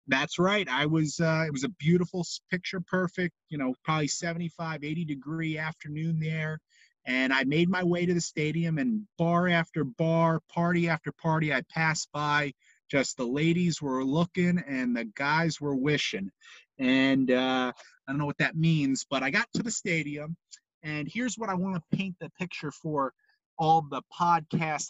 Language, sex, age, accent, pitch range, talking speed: English, male, 30-49, American, 145-180 Hz, 175 wpm